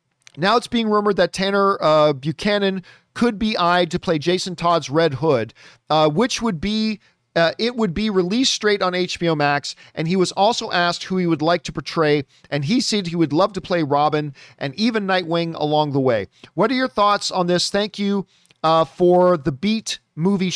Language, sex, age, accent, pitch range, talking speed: English, male, 40-59, American, 155-205 Hz, 200 wpm